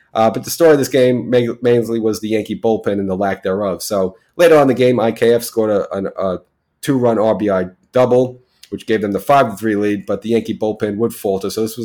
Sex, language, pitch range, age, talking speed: male, English, 100-120 Hz, 30-49, 225 wpm